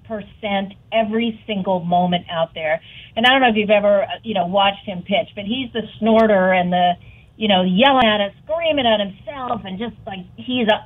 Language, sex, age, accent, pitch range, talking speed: English, female, 40-59, American, 185-235 Hz, 200 wpm